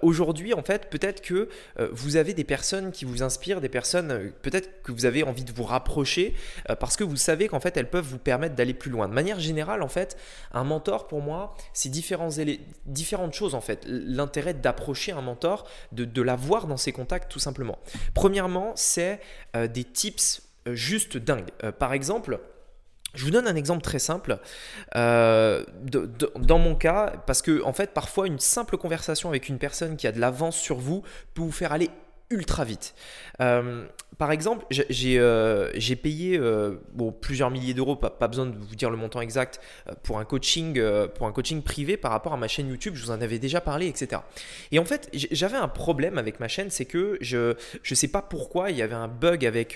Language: French